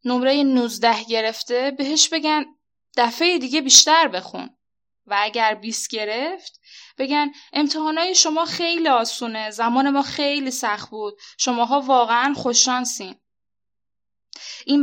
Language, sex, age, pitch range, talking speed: Persian, female, 10-29, 220-275 Hz, 110 wpm